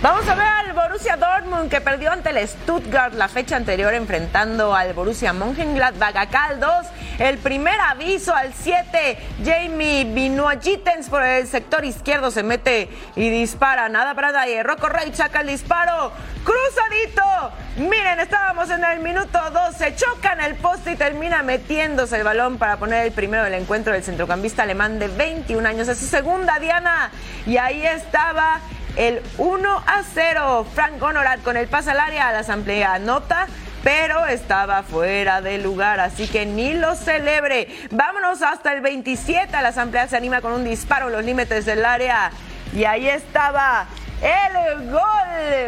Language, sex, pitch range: Spanish, female, 235-335 Hz